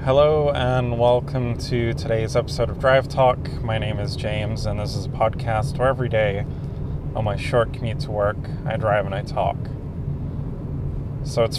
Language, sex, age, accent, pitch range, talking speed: English, male, 30-49, American, 115-140 Hz, 175 wpm